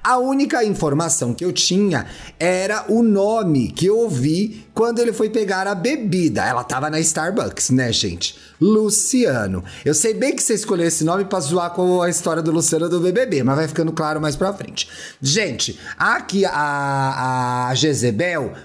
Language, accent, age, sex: Portuguese, Brazilian, 30-49, male